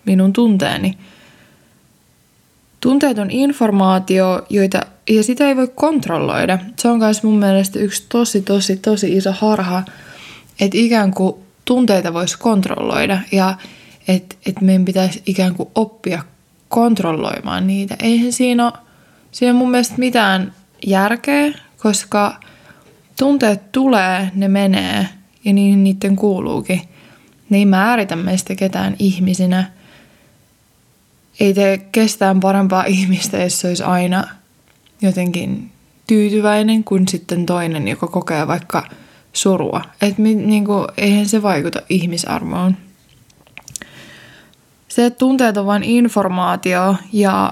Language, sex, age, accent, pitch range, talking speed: Finnish, female, 20-39, native, 185-220 Hz, 115 wpm